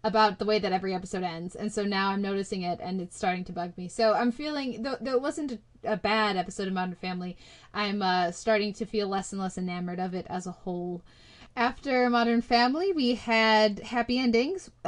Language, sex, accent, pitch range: English, female, American, 190-225 Hz